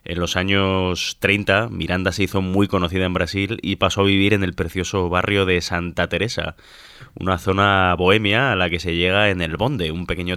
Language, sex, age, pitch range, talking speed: Spanish, male, 20-39, 85-100 Hz, 205 wpm